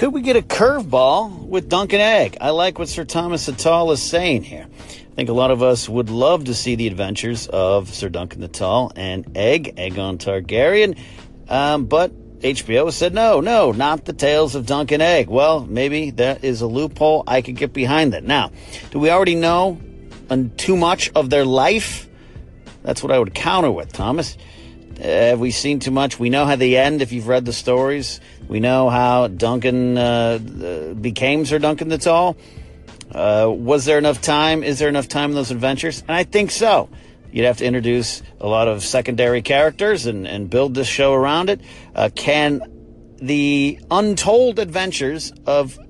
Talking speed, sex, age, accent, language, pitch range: 190 wpm, male, 40-59, American, English, 120-150 Hz